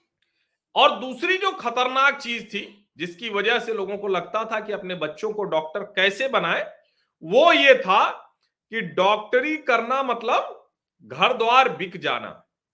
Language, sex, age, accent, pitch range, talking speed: Hindi, male, 40-59, native, 175-250 Hz, 145 wpm